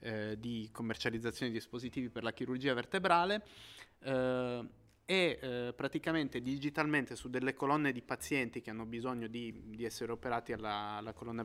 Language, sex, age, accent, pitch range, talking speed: Italian, male, 30-49, native, 115-140 Hz, 150 wpm